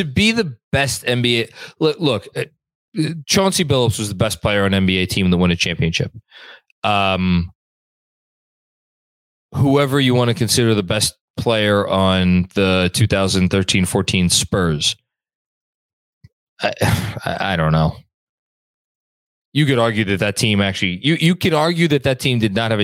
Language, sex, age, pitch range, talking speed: English, male, 20-39, 95-135 Hz, 140 wpm